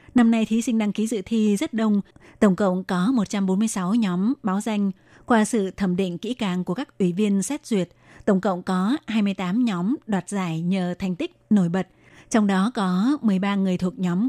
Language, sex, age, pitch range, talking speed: Vietnamese, female, 20-39, 190-225 Hz, 200 wpm